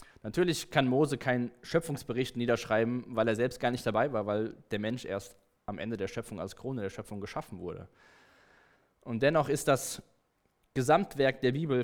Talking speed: 170 wpm